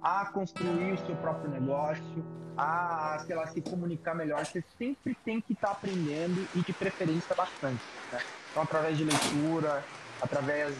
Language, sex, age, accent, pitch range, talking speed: Portuguese, male, 20-39, Brazilian, 145-180 Hz, 160 wpm